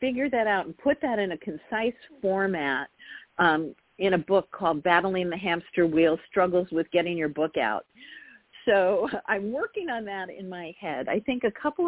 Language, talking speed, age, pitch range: English, 185 wpm, 50-69, 155-215 Hz